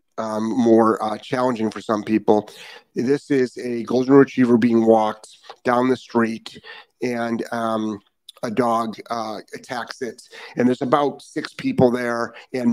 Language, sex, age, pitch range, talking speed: English, male, 30-49, 115-140 Hz, 145 wpm